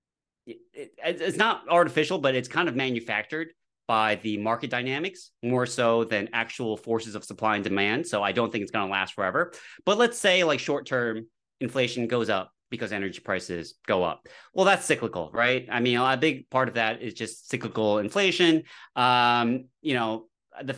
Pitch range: 110-145 Hz